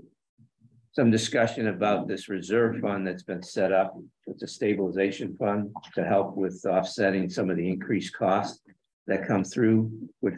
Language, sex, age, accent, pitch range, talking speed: English, male, 50-69, American, 90-110 Hz, 155 wpm